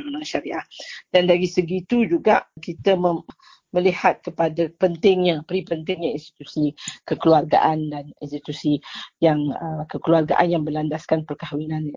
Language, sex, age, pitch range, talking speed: English, female, 40-59, 155-190 Hz, 110 wpm